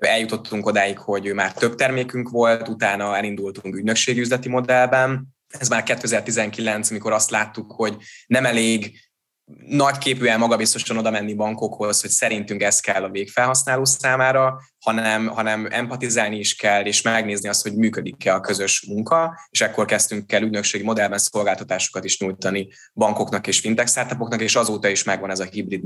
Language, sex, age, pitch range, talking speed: Hungarian, male, 20-39, 100-120 Hz, 145 wpm